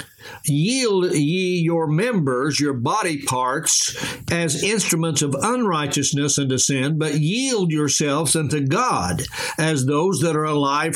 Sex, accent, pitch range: male, American, 150-180 Hz